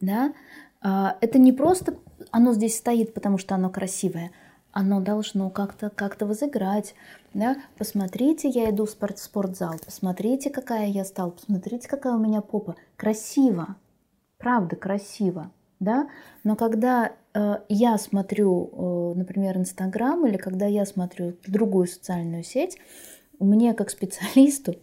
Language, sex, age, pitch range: Russian, female, 20-39, 185-225 Hz